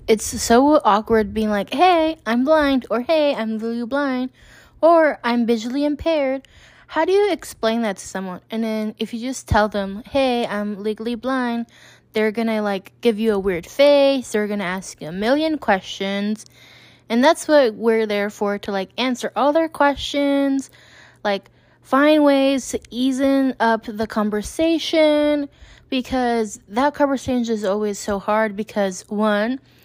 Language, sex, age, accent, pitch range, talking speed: English, female, 20-39, American, 205-270 Hz, 160 wpm